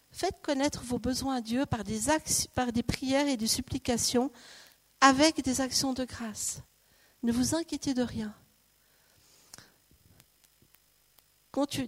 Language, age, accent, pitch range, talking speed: French, 50-69, French, 235-280 Hz, 125 wpm